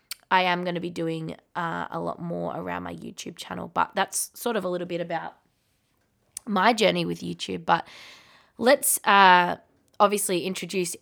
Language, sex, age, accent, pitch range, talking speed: English, female, 20-39, Australian, 170-195 Hz, 170 wpm